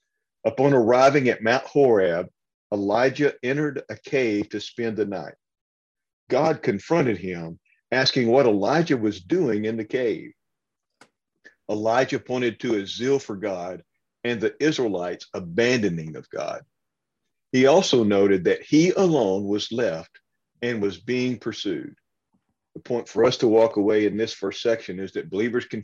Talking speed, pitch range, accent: 150 wpm, 105-130 Hz, American